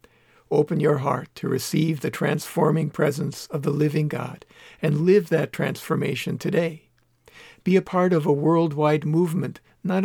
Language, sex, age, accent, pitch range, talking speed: English, male, 60-79, American, 135-175 Hz, 150 wpm